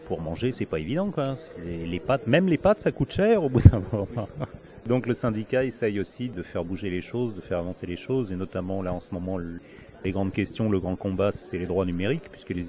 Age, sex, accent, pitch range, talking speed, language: 40-59, male, French, 90-115 Hz, 235 wpm, French